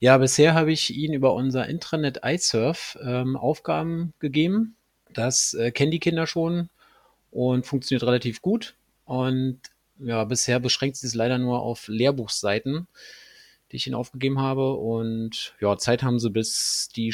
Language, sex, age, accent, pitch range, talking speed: German, male, 30-49, German, 115-140 Hz, 155 wpm